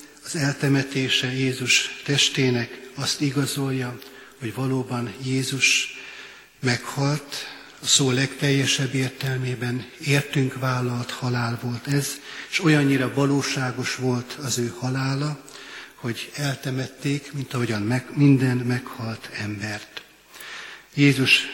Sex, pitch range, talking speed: male, 125-140 Hz, 100 wpm